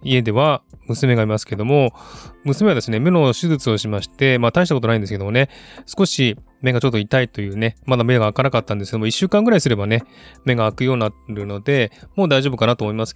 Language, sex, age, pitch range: Japanese, male, 20-39, 115-140 Hz